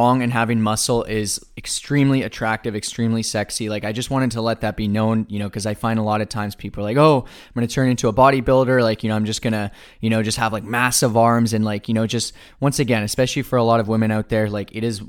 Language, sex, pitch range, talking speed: English, male, 105-120 Hz, 265 wpm